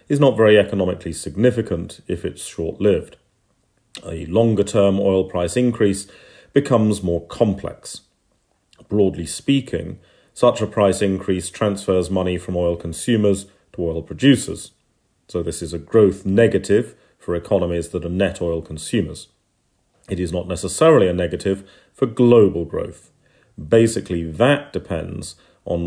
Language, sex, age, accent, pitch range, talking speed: English, male, 40-59, British, 85-105 Hz, 130 wpm